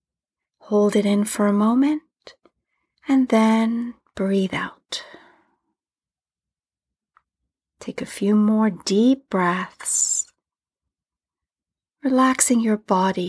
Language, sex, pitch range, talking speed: English, female, 200-240 Hz, 85 wpm